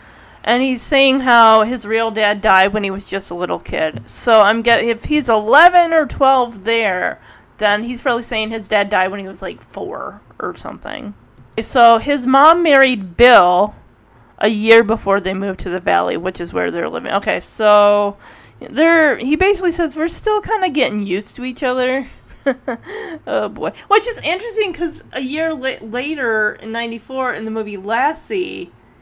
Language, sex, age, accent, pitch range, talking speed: English, female, 30-49, American, 205-280 Hz, 180 wpm